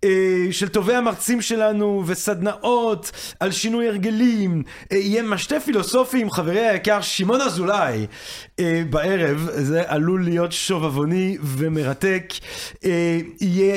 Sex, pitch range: male, 175-235 Hz